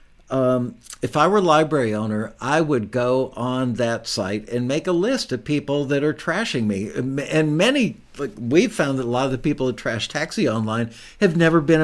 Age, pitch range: 60-79, 125-170 Hz